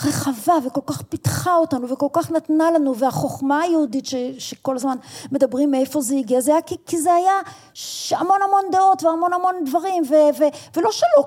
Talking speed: 185 wpm